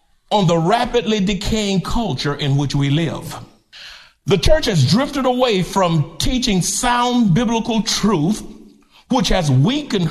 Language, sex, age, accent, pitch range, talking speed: English, male, 60-79, American, 175-240 Hz, 130 wpm